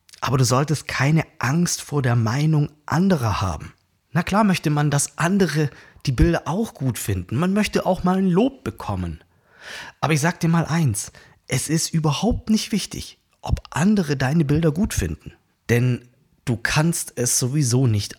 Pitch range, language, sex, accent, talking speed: 115-165 Hz, German, male, German, 170 wpm